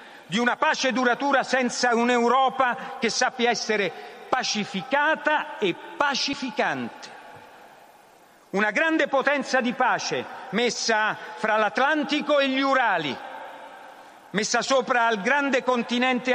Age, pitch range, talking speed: 50-69, 205-255 Hz, 105 wpm